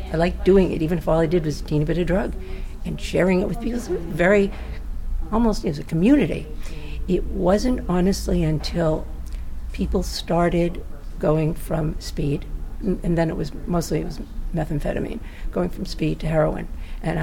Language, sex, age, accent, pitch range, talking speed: English, female, 60-79, American, 155-195 Hz, 180 wpm